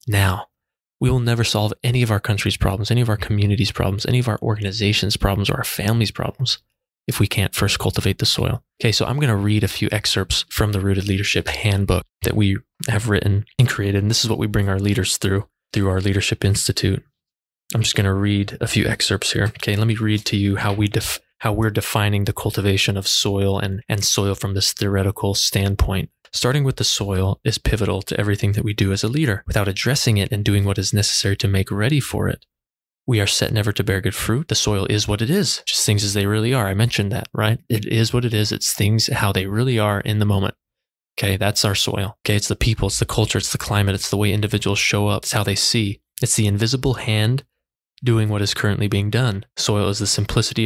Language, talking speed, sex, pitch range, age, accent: English, 235 wpm, male, 100-115 Hz, 20-39, American